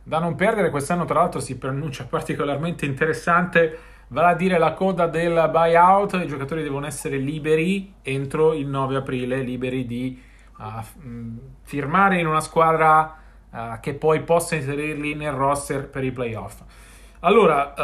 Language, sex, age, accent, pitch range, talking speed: Italian, male, 30-49, native, 145-185 Hz, 140 wpm